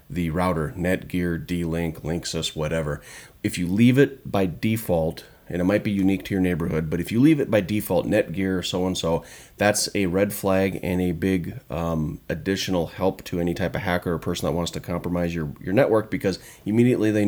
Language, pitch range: English, 85-95 Hz